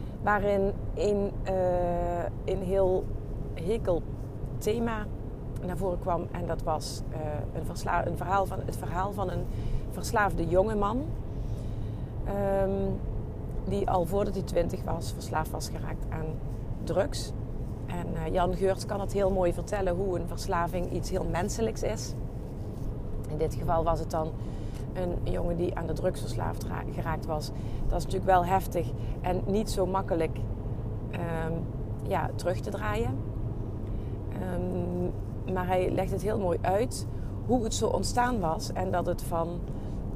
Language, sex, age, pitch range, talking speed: Dutch, female, 40-59, 105-165 Hz, 145 wpm